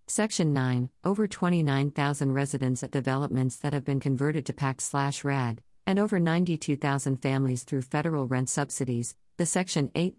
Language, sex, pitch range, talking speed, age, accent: English, female, 130-155 Hz, 140 wpm, 50-69, American